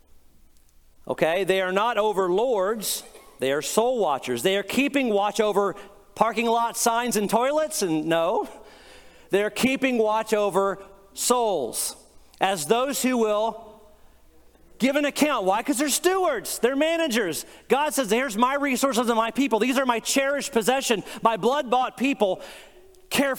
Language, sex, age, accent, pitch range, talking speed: English, male, 40-59, American, 165-245 Hz, 145 wpm